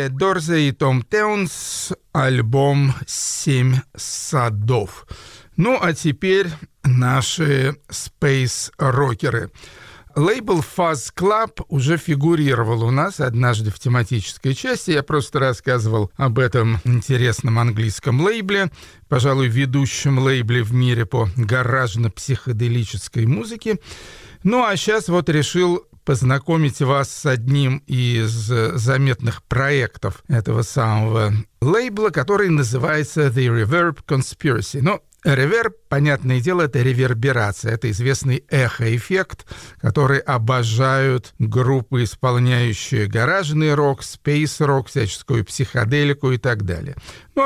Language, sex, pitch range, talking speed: Russian, male, 120-150 Hz, 105 wpm